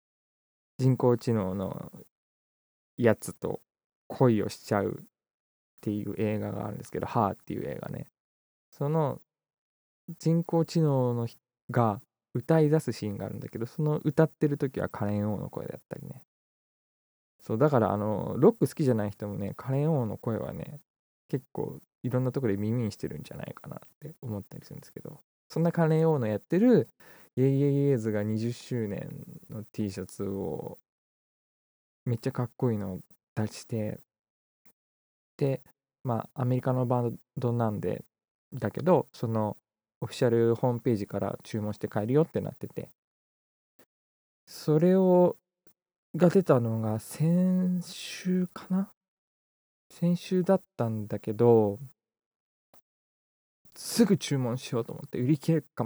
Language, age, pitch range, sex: Japanese, 20-39, 105-155 Hz, male